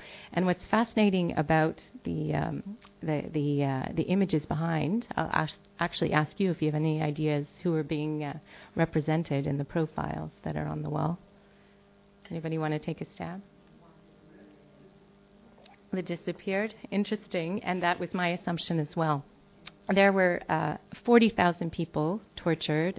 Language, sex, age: English, female, 40-59